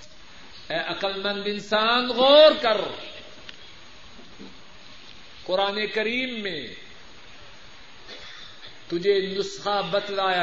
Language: Urdu